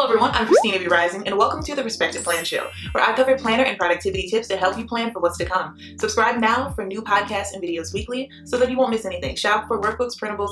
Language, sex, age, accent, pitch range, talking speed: English, female, 20-39, American, 200-270 Hz, 260 wpm